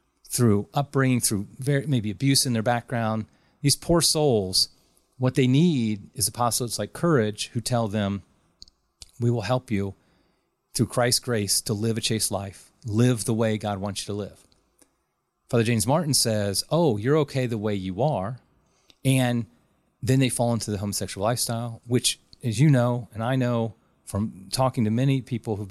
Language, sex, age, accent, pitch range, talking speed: English, male, 30-49, American, 105-130 Hz, 170 wpm